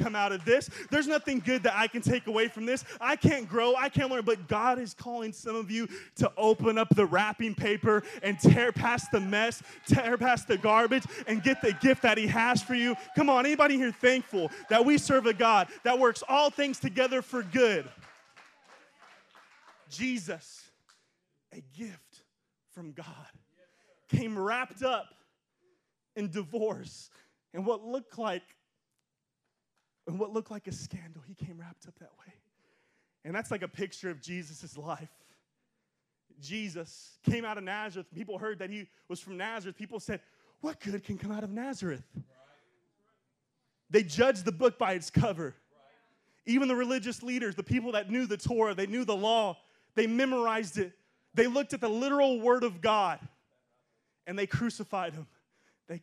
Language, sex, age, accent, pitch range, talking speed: English, male, 20-39, American, 190-245 Hz, 170 wpm